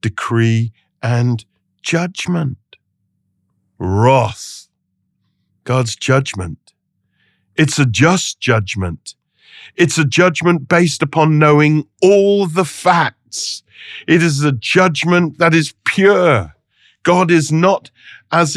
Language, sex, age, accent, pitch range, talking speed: English, male, 50-69, British, 110-170 Hz, 95 wpm